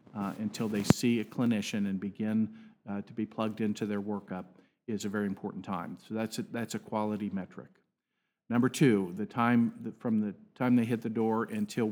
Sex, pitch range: male, 105-120 Hz